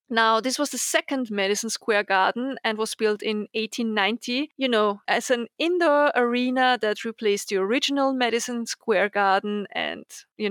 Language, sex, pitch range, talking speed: English, female, 205-270 Hz, 160 wpm